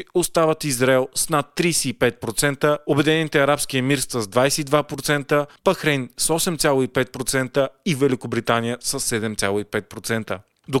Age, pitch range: 30-49, 125-160 Hz